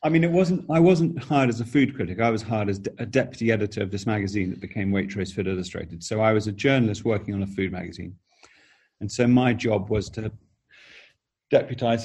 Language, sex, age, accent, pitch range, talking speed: English, male, 40-59, British, 100-115 Hz, 215 wpm